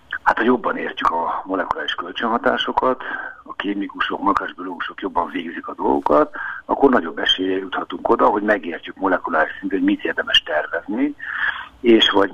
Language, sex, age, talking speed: Hungarian, male, 60-79, 145 wpm